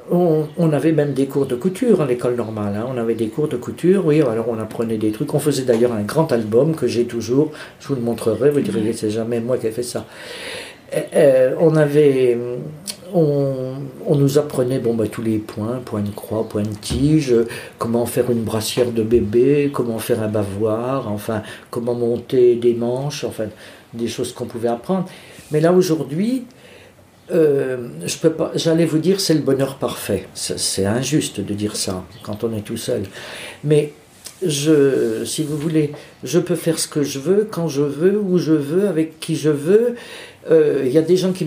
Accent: French